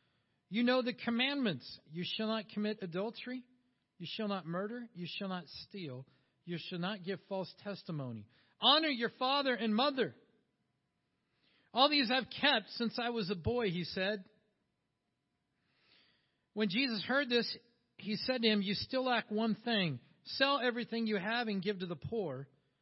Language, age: English, 50-69